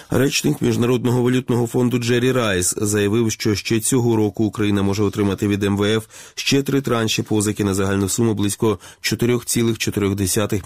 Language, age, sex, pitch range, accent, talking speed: Ukrainian, 20-39, male, 95-115 Hz, native, 140 wpm